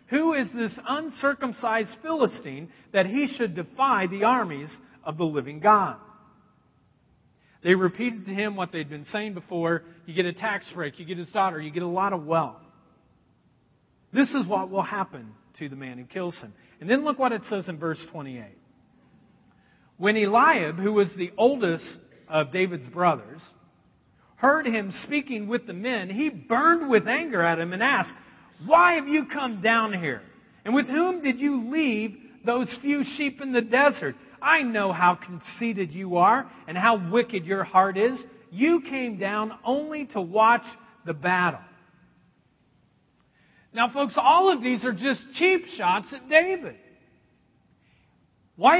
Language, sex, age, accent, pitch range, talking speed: English, male, 50-69, American, 180-270 Hz, 160 wpm